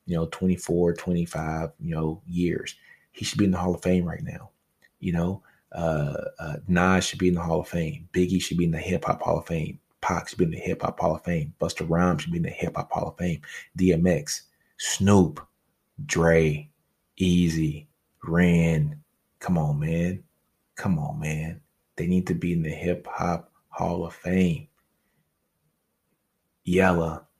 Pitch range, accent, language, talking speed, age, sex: 80-90 Hz, American, English, 180 wpm, 20-39, male